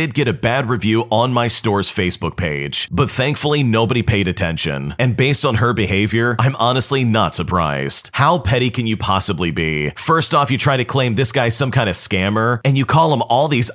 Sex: male